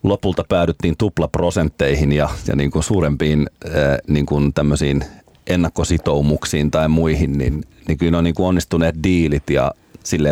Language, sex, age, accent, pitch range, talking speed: Finnish, male, 30-49, native, 70-85 Hz, 145 wpm